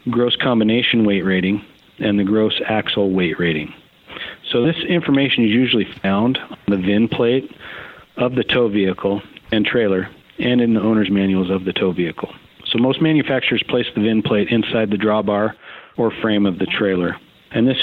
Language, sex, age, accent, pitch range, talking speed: English, male, 40-59, American, 100-115 Hz, 175 wpm